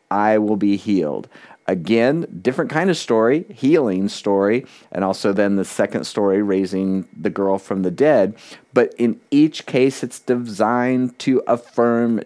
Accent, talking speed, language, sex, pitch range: American, 150 wpm, English, male, 100-120 Hz